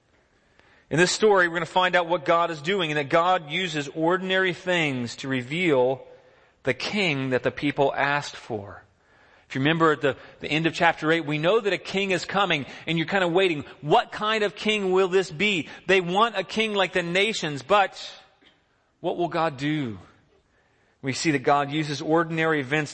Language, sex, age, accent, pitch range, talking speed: English, male, 30-49, American, 155-190 Hz, 195 wpm